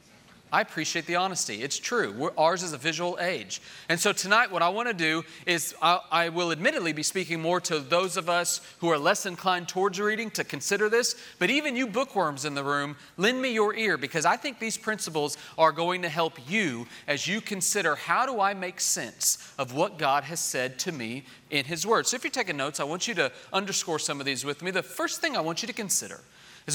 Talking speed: 230 wpm